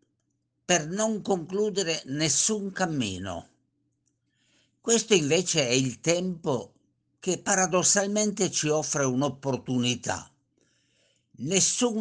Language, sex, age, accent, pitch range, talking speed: Italian, male, 50-69, native, 115-185 Hz, 80 wpm